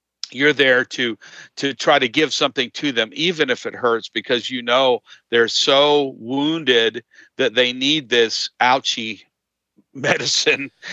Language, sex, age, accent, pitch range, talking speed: English, male, 50-69, American, 110-135 Hz, 145 wpm